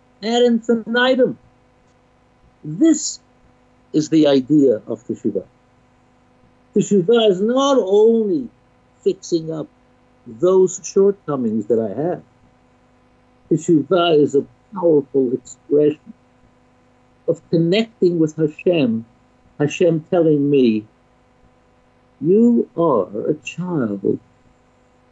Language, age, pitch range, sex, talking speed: English, 60-79, 155-230 Hz, male, 85 wpm